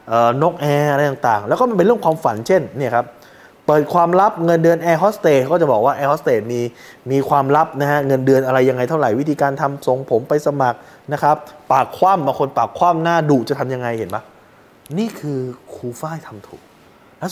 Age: 20-39